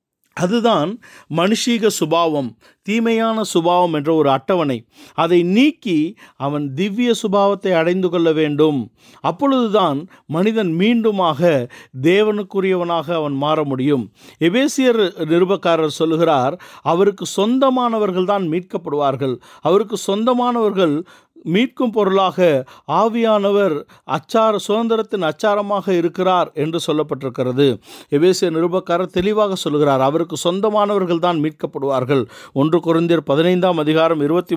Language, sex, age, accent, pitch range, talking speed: Tamil, male, 50-69, native, 155-215 Hz, 90 wpm